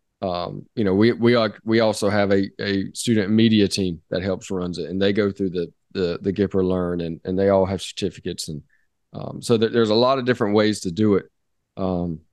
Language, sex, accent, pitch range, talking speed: English, male, American, 95-110 Hz, 230 wpm